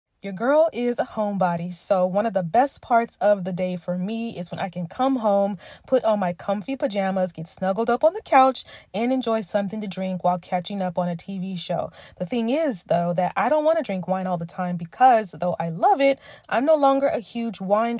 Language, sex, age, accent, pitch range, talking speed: English, female, 20-39, American, 180-235 Hz, 235 wpm